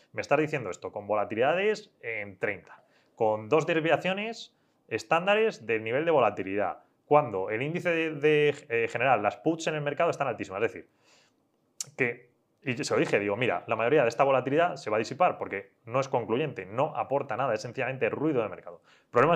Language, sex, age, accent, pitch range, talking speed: Spanish, male, 20-39, Spanish, 135-175 Hz, 190 wpm